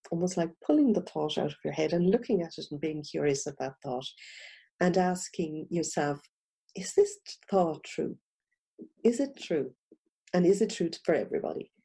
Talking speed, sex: 175 wpm, female